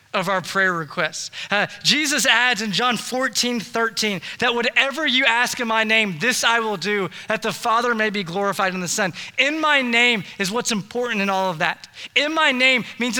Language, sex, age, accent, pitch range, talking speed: English, male, 20-39, American, 205-260 Hz, 205 wpm